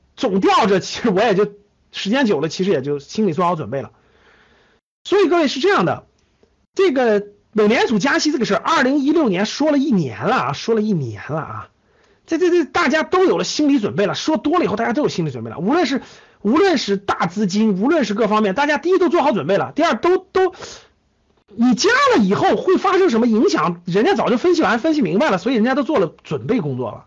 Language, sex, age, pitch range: Chinese, male, 50-69, 195-310 Hz